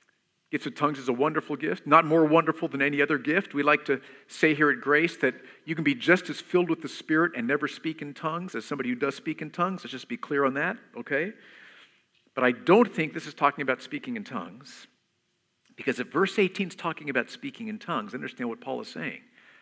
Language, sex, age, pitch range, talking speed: English, male, 50-69, 135-185 Hz, 230 wpm